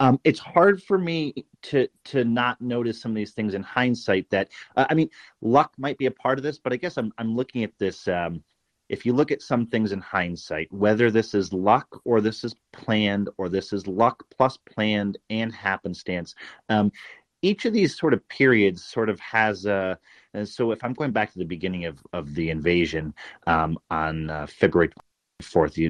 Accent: American